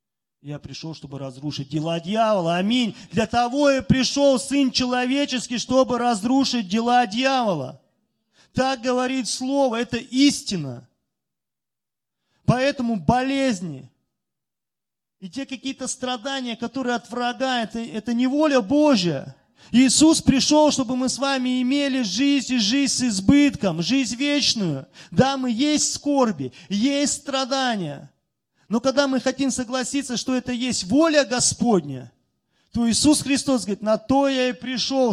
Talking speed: 130 wpm